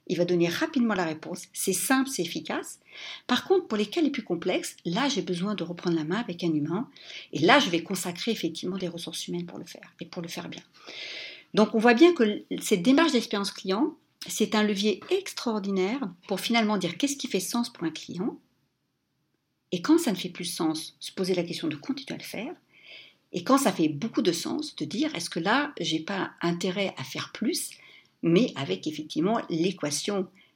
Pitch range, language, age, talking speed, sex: 170-250 Hz, French, 60-79, 210 wpm, female